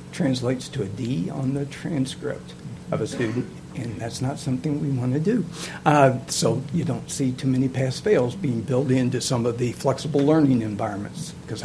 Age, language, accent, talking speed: 60-79, English, American, 180 wpm